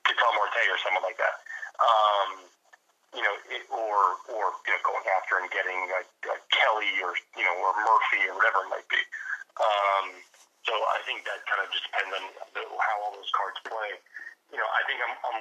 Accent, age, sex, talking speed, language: American, 40-59, male, 205 wpm, English